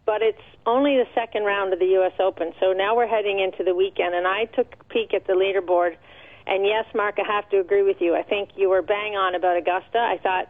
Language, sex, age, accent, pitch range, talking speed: English, female, 40-59, American, 185-210 Hz, 250 wpm